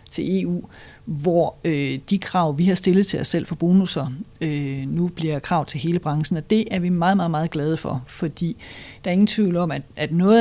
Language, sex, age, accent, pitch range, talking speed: Danish, female, 40-59, native, 155-200 Hz, 225 wpm